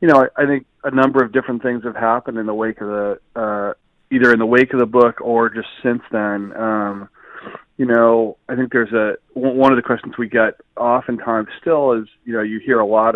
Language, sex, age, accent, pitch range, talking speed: English, male, 40-59, American, 105-115 Hz, 235 wpm